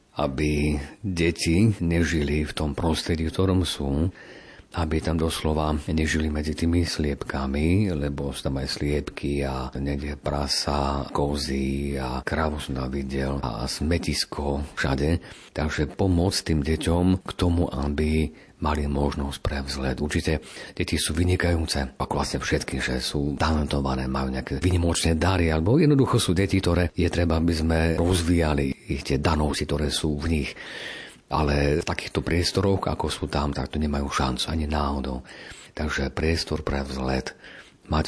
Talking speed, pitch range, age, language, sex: 145 wpm, 70-85 Hz, 50-69, Slovak, male